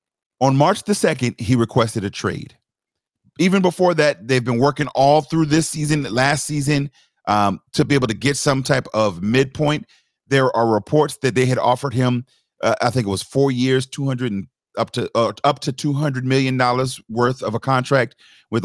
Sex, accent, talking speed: male, American, 190 wpm